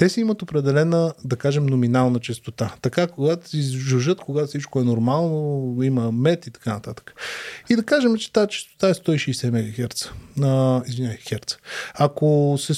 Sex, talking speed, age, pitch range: male, 155 wpm, 20-39, 125-170 Hz